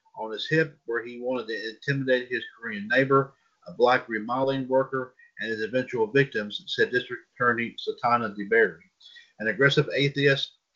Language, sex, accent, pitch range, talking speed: English, male, American, 125-145 Hz, 150 wpm